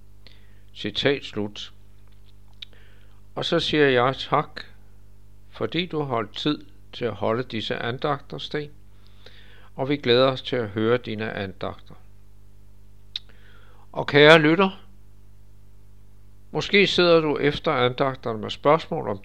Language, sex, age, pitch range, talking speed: Danish, male, 60-79, 100-135 Hz, 120 wpm